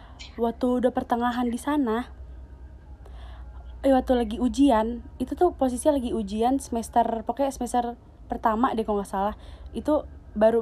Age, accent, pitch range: 20-39, native, 210-255 Hz